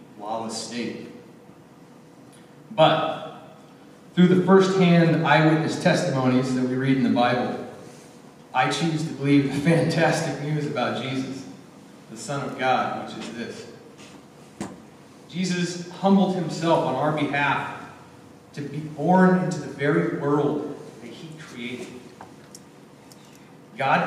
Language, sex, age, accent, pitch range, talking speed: English, male, 30-49, American, 135-175 Hz, 120 wpm